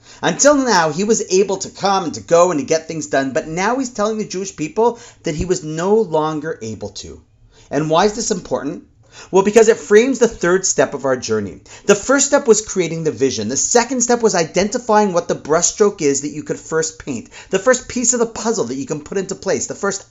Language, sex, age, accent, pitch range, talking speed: English, male, 40-59, American, 150-215 Hz, 235 wpm